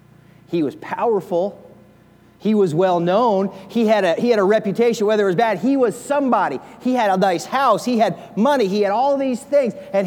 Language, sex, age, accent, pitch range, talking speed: English, male, 30-49, American, 190-255 Hz, 190 wpm